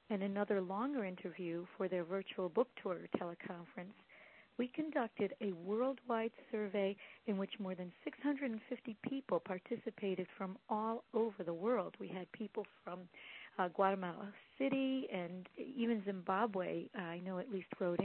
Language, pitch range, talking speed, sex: English, 185-235 Hz, 140 wpm, female